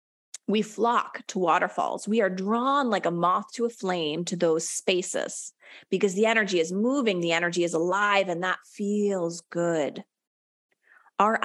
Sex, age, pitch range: female, 30-49, 180-230 Hz